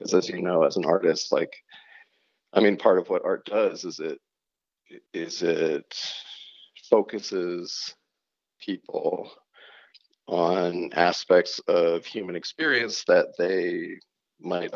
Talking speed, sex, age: 120 wpm, male, 40-59